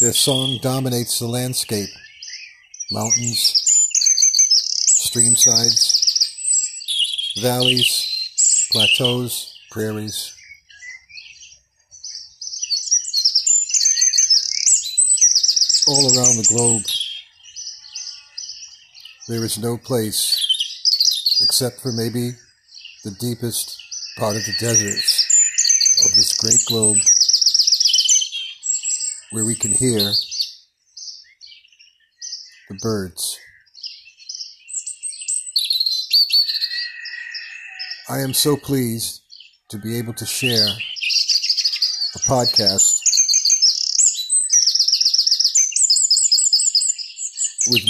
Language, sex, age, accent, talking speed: English, male, 50-69, American, 60 wpm